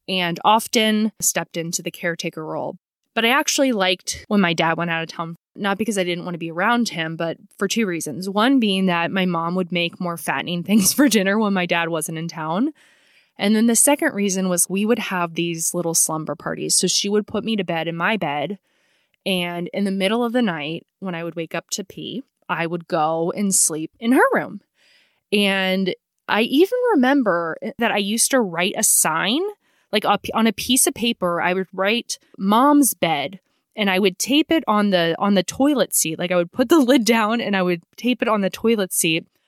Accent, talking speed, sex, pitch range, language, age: American, 220 wpm, female, 170-225 Hz, English, 20-39